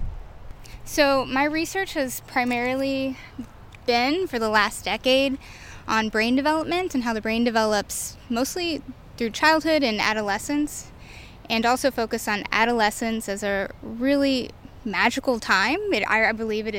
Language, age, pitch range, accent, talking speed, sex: English, 10-29, 205-250 Hz, American, 130 wpm, female